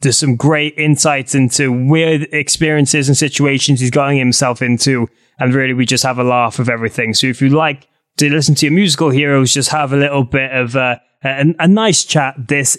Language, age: English, 20-39